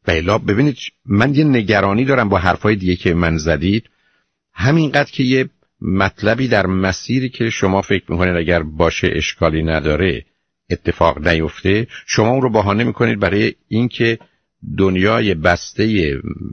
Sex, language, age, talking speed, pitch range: male, Persian, 50-69, 135 wpm, 85-110 Hz